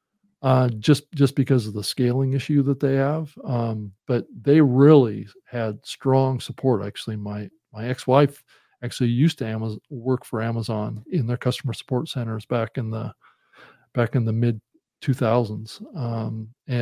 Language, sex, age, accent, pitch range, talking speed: English, male, 50-69, American, 120-145 Hz, 150 wpm